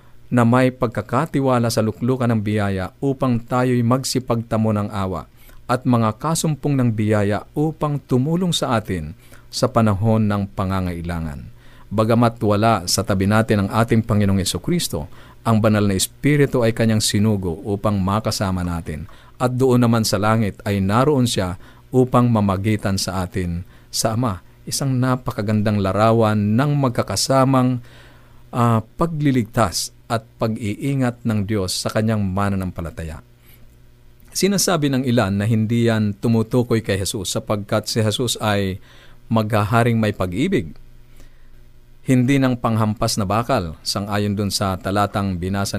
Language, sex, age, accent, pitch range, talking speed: Filipino, male, 50-69, native, 105-125 Hz, 130 wpm